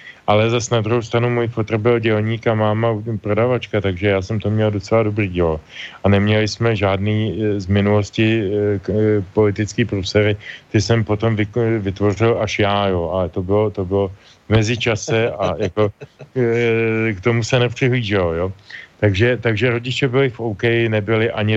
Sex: male